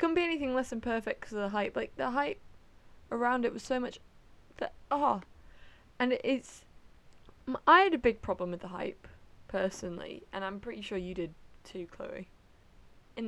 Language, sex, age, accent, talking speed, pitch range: English, female, 20-39, British, 185 wpm, 175-210 Hz